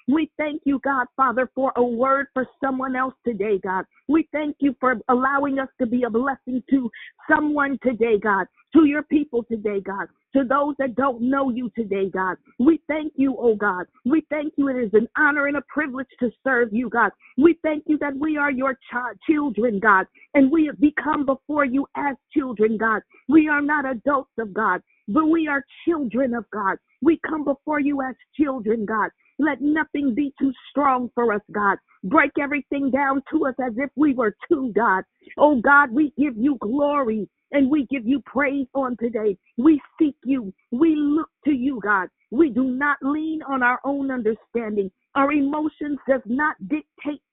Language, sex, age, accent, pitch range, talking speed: English, female, 50-69, American, 245-295 Hz, 190 wpm